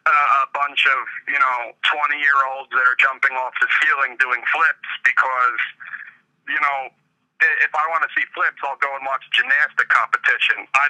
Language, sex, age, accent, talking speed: English, male, 40-59, American, 175 wpm